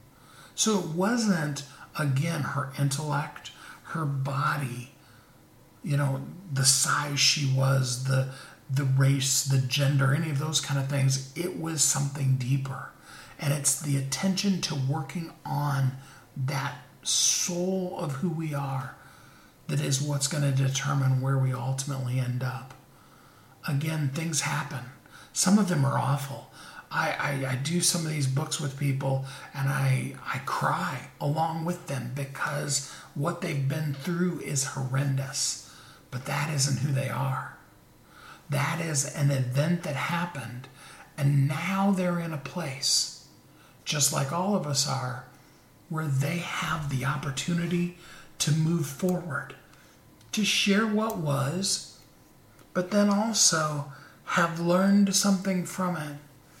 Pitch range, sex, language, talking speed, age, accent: 135-165 Hz, male, English, 135 wpm, 50-69, American